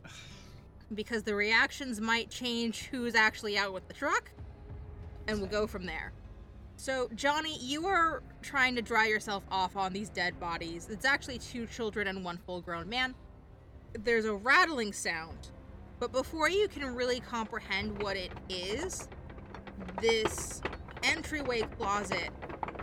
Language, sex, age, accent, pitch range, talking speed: English, female, 20-39, American, 195-265 Hz, 140 wpm